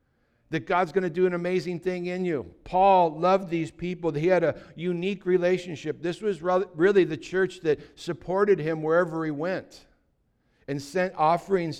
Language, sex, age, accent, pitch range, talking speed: English, male, 60-79, American, 170-215 Hz, 170 wpm